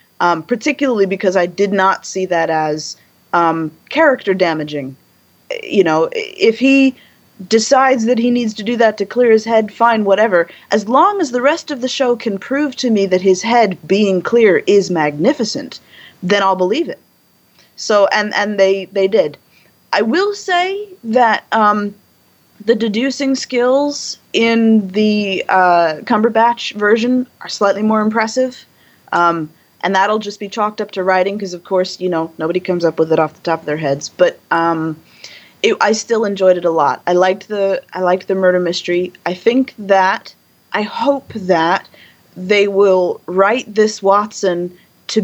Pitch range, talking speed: 180-245 Hz, 170 wpm